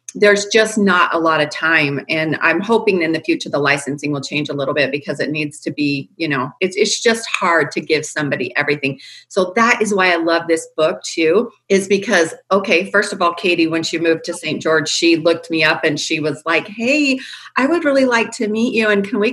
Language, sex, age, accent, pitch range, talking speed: English, female, 40-59, American, 165-230 Hz, 235 wpm